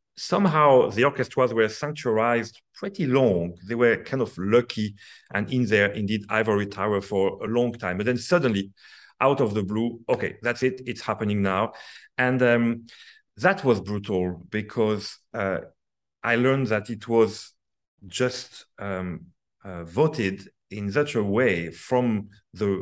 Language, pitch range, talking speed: English, 95-115 Hz, 150 wpm